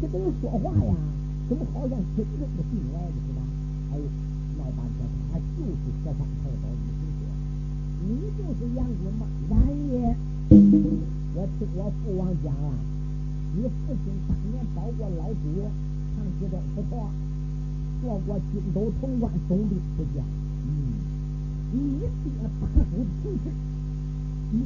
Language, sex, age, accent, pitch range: Chinese, male, 50-69, American, 140-150 Hz